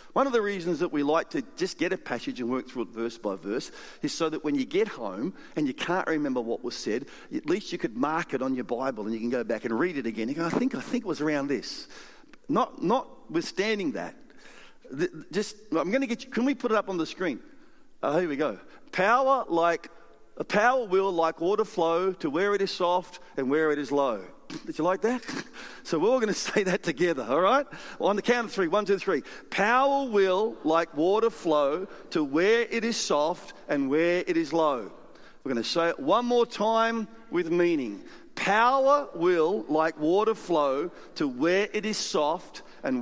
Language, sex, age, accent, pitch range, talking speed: English, male, 50-69, Australian, 165-245 Hz, 220 wpm